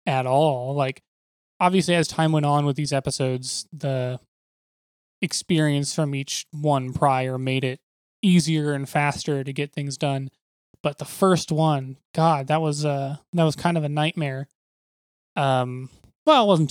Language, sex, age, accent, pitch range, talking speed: English, male, 20-39, American, 135-160 Hz, 160 wpm